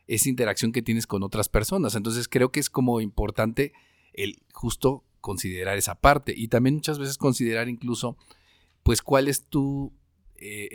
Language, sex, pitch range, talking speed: Spanish, male, 95-120 Hz, 160 wpm